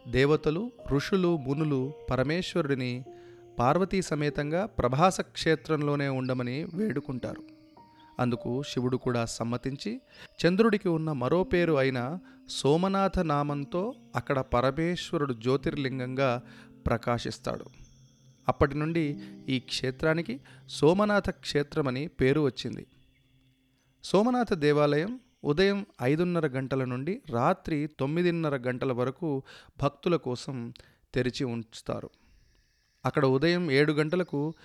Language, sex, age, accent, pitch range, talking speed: Telugu, male, 30-49, native, 130-170 Hz, 85 wpm